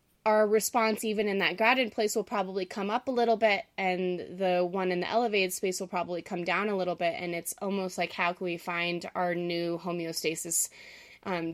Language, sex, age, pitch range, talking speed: English, female, 20-39, 180-225 Hz, 210 wpm